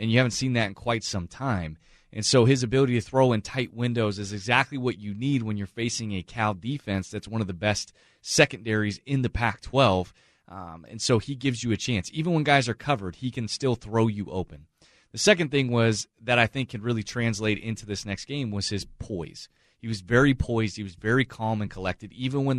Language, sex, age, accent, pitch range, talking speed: English, male, 30-49, American, 100-125 Hz, 230 wpm